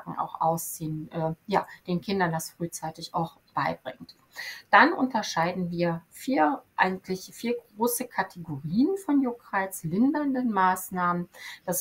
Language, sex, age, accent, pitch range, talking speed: German, female, 30-49, German, 165-190 Hz, 115 wpm